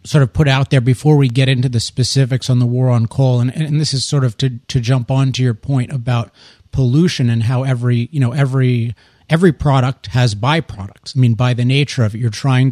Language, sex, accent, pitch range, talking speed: English, male, American, 120-145 Hz, 235 wpm